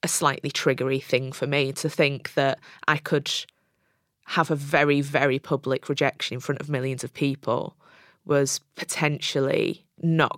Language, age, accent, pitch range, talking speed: English, 20-39, British, 135-155 Hz, 150 wpm